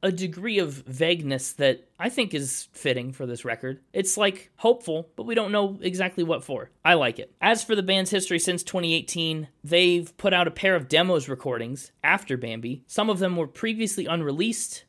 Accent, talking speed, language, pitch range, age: American, 195 wpm, English, 135-185 Hz, 20-39